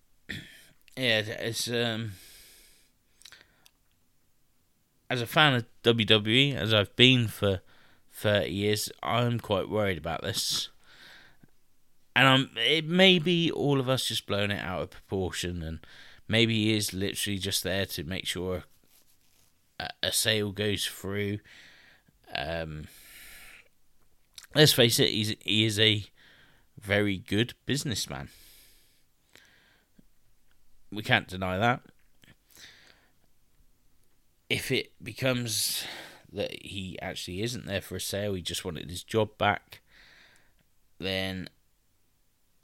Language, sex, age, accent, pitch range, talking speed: English, male, 20-39, British, 90-120 Hz, 115 wpm